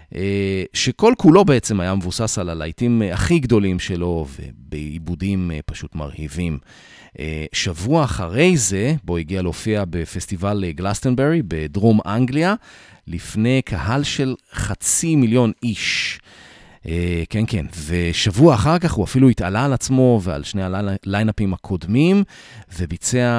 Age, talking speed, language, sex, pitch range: 40-59, 115 wpm, Hebrew, male, 85-125 Hz